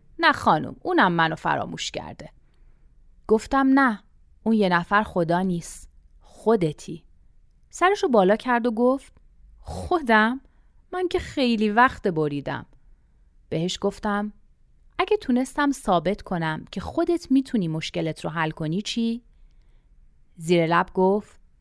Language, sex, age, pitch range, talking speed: Persian, female, 30-49, 165-260 Hz, 115 wpm